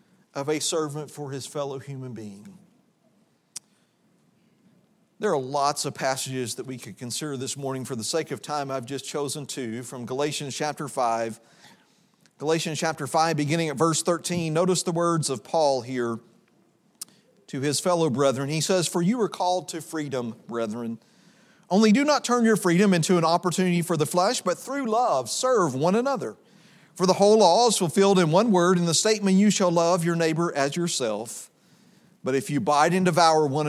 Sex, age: male, 40-59